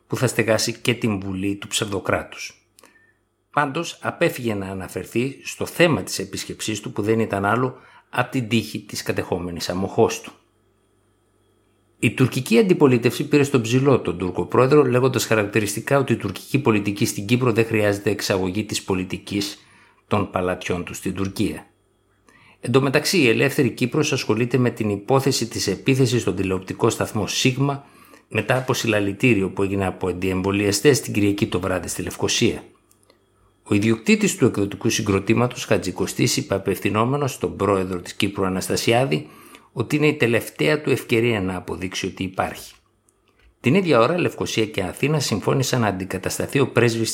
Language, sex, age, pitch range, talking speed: Greek, male, 60-79, 100-125 Hz, 150 wpm